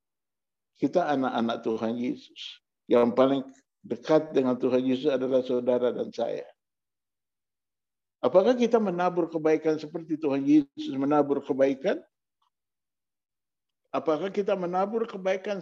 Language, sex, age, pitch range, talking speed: Indonesian, male, 50-69, 125-190 Hz, 105 wpm